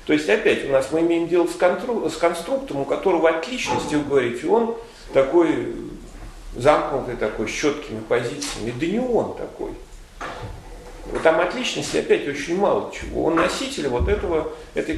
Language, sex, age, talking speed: Russian, male, 40-59, 150 wpm